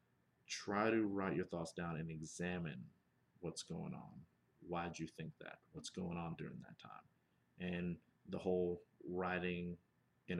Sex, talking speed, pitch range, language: male, 155 wpm, 85-95 Hz, English